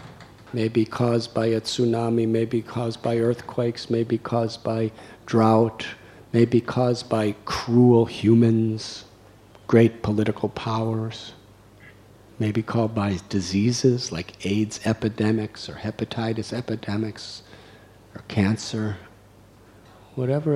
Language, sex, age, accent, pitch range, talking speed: English, male, 50-69, American, 105-120 Hz, 115 wpm